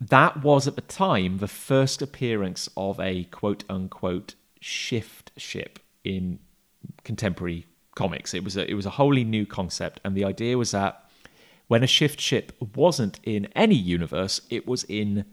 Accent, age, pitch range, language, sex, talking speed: British, 30-49, 95-120 Hz, English, male, 160 wpm